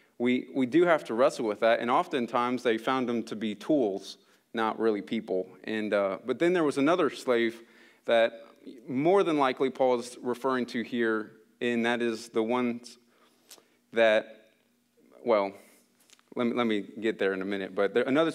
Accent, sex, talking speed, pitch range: American, male, 180 wpm, 110-130 Hz